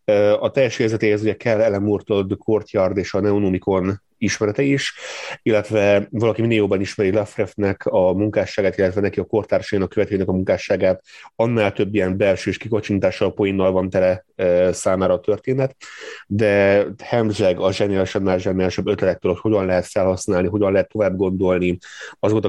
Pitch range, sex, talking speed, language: 95-115 Hz, male, 150 wpm, Hungarian